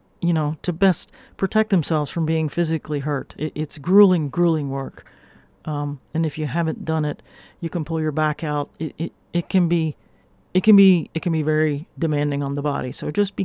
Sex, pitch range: male, 150-175 Hz